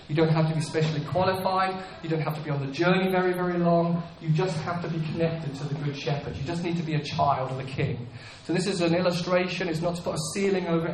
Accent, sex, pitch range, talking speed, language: British, male, 140-170 Hz, 275 wpm, English